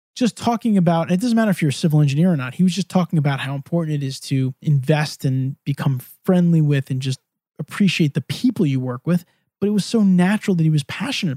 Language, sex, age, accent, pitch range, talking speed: English, male, 20-39, American, 140-180 Hz, 240 wpm